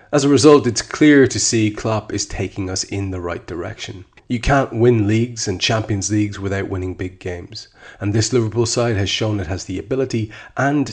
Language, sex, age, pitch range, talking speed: English, male, 30-49, 100-120 Hz, 205 wpm